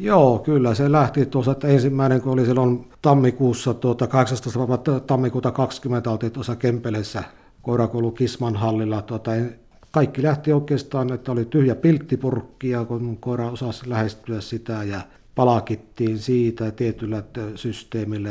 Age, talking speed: 60-79, 120 wpm